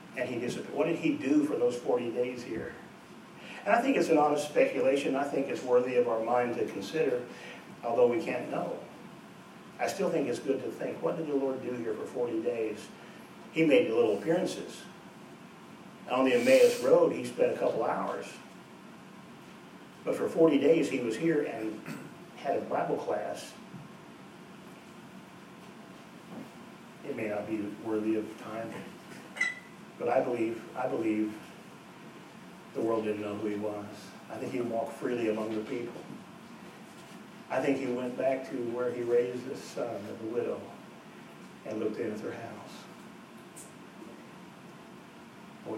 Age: 50-69